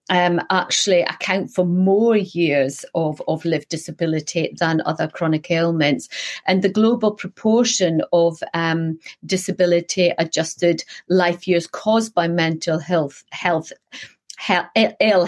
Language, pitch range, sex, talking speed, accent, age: English, 170-200 Hz, female, 120 wpm, British, 40-59